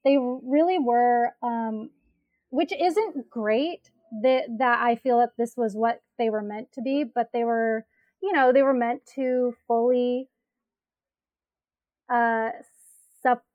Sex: female